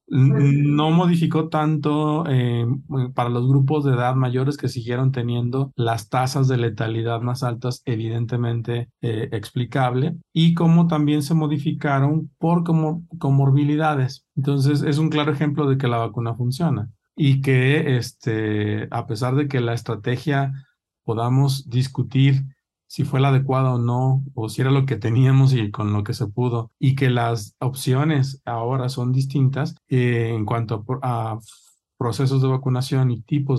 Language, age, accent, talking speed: Spanish, 40-59, Mexican, 150 wpm